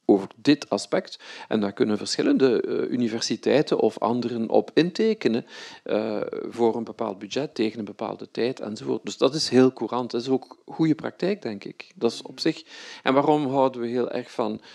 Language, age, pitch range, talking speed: Dutch, 50-69, 110-125 Hz, 180 wpm